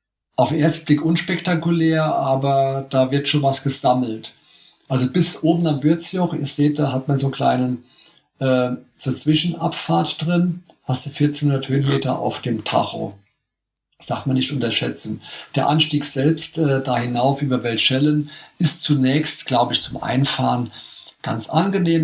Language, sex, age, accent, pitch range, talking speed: German, male, 50-69, German, 130-155 Hz, 145 wpm